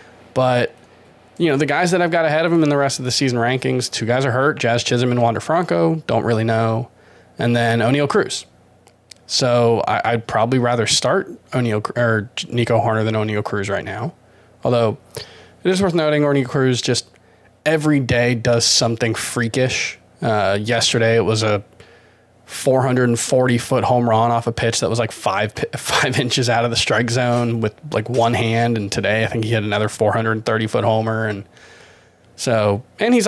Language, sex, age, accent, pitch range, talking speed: English, male, 20-39, American, 115-130 Hz, 185 wpm